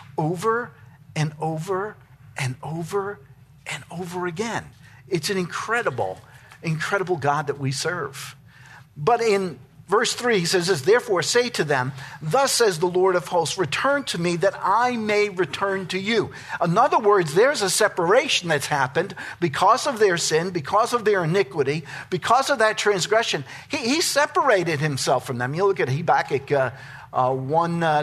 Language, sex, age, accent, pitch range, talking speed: English, male, 50-69, American, 135-200 Hz, 165 wpm